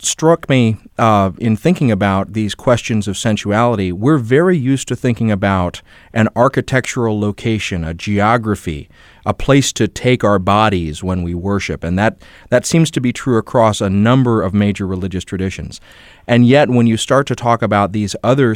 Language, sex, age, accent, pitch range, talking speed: English, male, 30-49, American, 95-115 Hz, 175 wpm